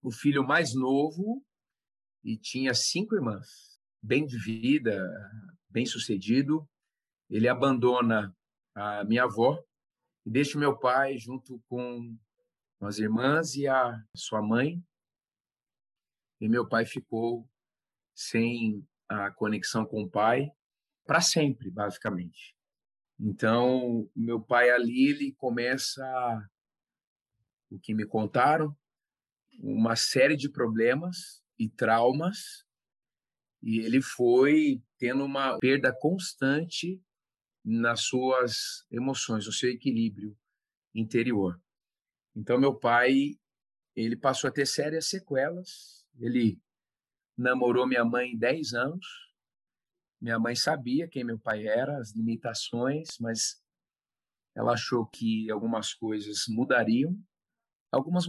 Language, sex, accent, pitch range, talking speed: Portuguese, male, Brazilian, 115-145 Hz, 110 wpm